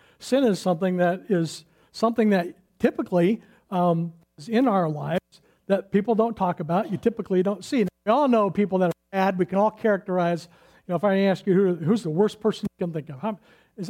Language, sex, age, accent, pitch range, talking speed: English, male, 50-69, American, 170-210 Hz, 220 wpm